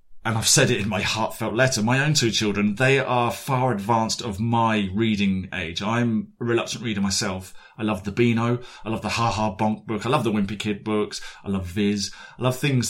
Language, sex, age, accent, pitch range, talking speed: English, male, 30-49, British, 100-120 Hz, 225 wpm